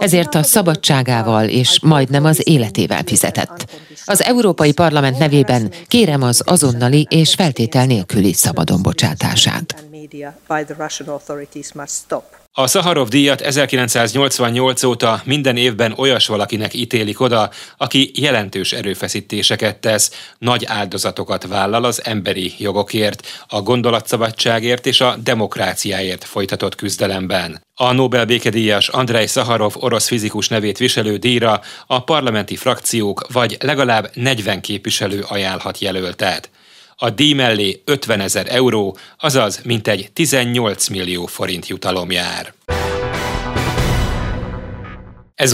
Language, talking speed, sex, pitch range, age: Hungarian, 105 wpm, male, 105-140 Hz, 30-49